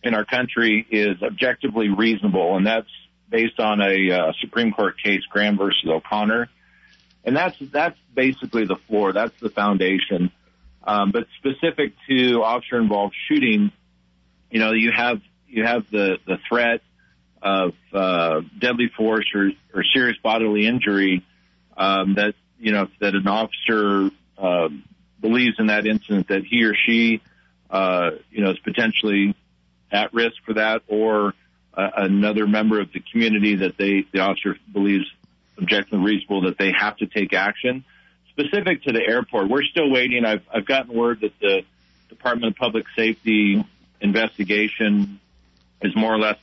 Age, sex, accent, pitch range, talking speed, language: 40-59, male, American, 95-115 Hz, 155 wpm, English